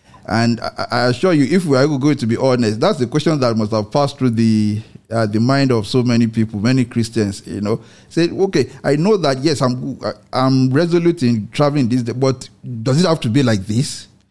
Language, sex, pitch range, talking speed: English, male, 110-140 Hz, 220 wpm